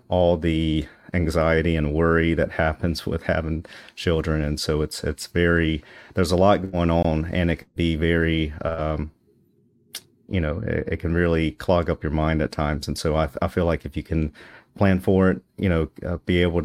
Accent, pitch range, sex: American, 80-90 Hz, male